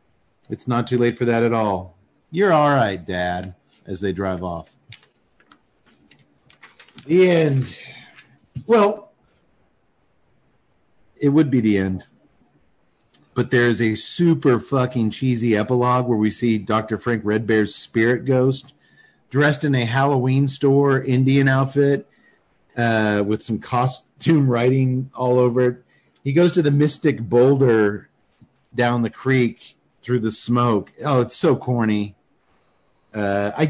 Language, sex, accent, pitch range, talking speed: English, male, American, 105-140 Hz, 130 wpm